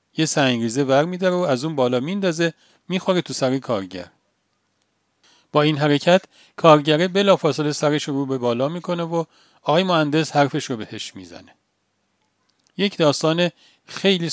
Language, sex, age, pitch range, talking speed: Persian, male, 40-59, 130-170 Hz, 135 wpm